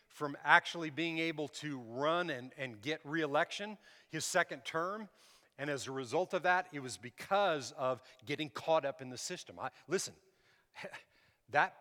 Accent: American